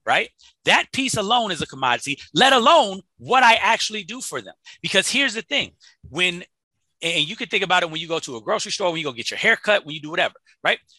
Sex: male